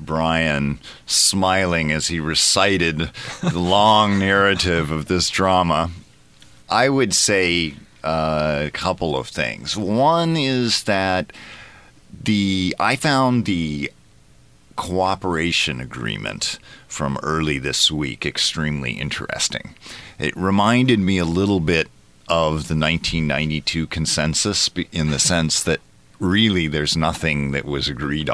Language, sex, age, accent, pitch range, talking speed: English, male, 40-59, American, 75-95 Hz, 110 wpm